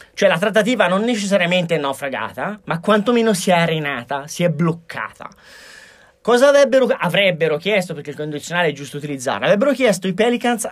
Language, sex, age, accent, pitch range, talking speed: Italian, male, 30-49, native, 165-225 Hz, 160 wpm